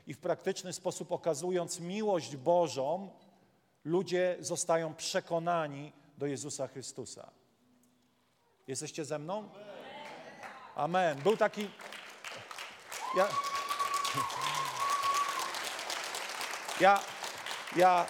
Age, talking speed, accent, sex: 40-59, 75 wpm, native, male